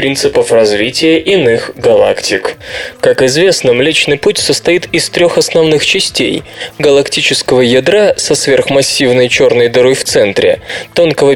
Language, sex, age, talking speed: Russian, male, 20-39, 115 wpm